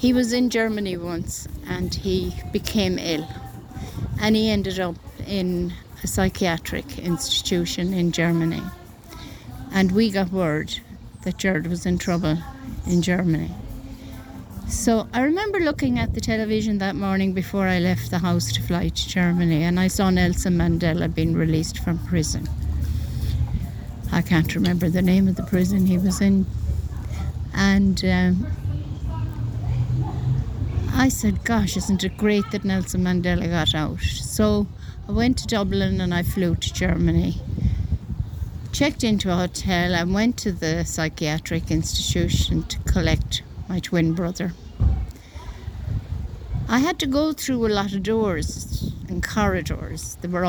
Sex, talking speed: female, 140 wpm